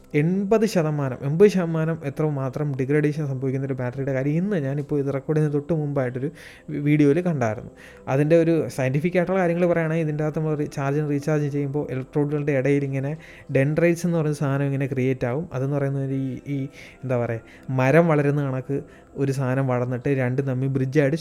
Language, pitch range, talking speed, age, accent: Malayalam, 140-170 Hz, 155 wpm, 20-39, native